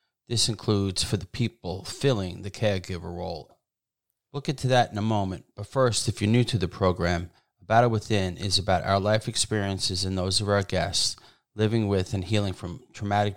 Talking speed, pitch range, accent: 190 wpm, 95-110 Hz, American